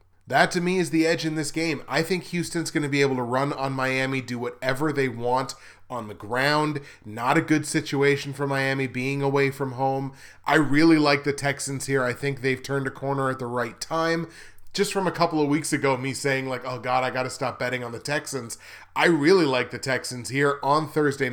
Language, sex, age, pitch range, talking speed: English, male, 30-49, 125-155 Hz, 230 wpm